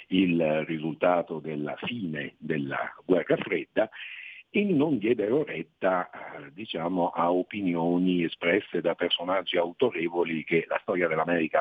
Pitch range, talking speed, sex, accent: 80-95 Hz, 110 wpm, male, native